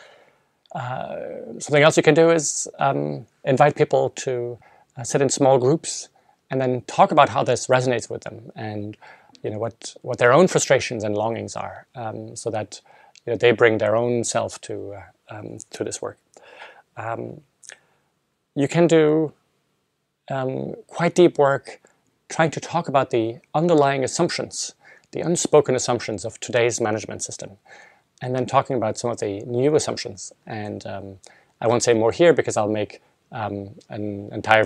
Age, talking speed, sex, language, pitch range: 30-49, 165 wpm, male, English, 115-155 Hz